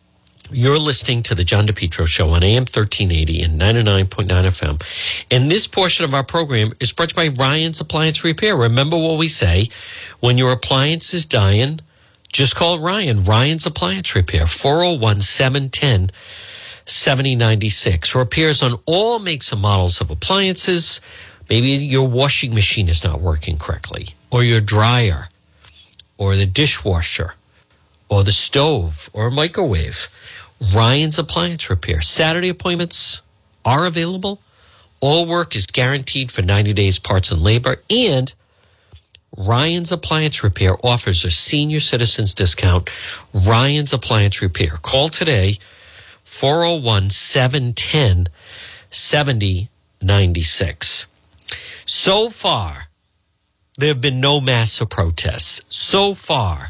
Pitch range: 95-145 Hz